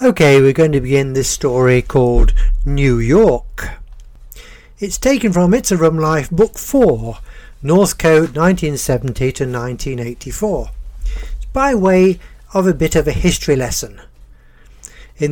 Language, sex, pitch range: English, male, 130-175 Hz